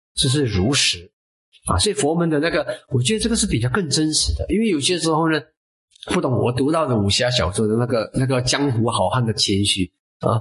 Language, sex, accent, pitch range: Chinese, male, native, 110-150 Hz